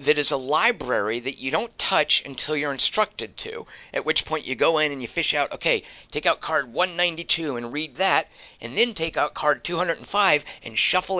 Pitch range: 125-170 Hz